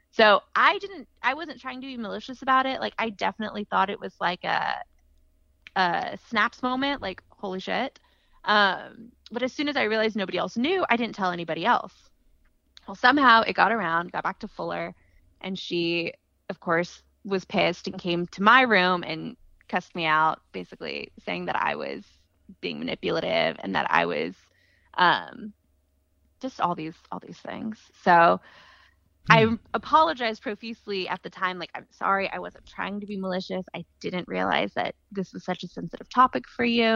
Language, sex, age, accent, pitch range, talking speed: English, female, 20-39, American, 170-230 Hz, 180 wpm